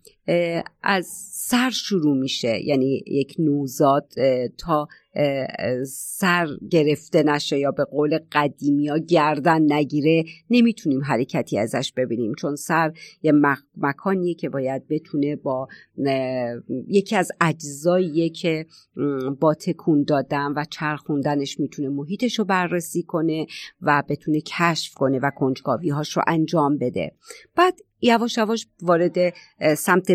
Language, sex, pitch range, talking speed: Persian, female, 145-185 Hz, 110 wpm